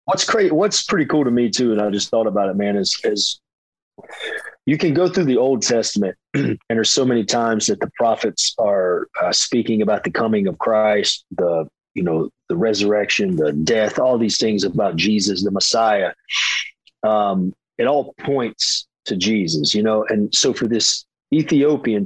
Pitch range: 105-135 Hz